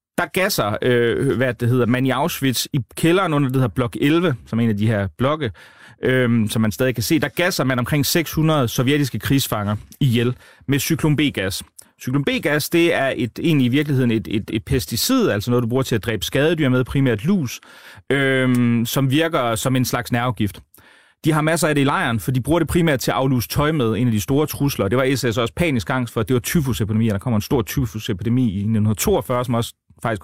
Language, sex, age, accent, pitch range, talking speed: Danish, male, 30-49, native, 115-150 Hz, 220 wpm